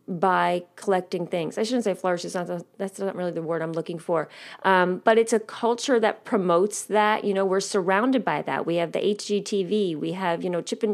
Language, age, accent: English, 30-49, American